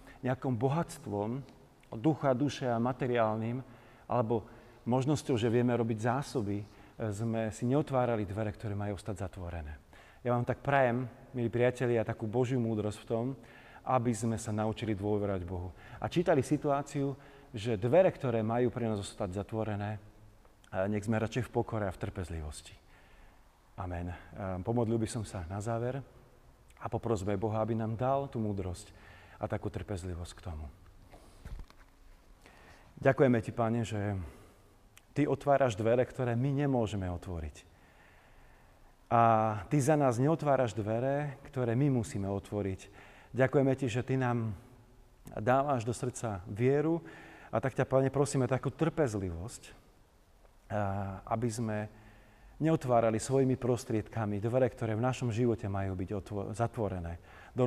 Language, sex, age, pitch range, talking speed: Slovak, male, 40-59, 100-125 Hz, 130 wpm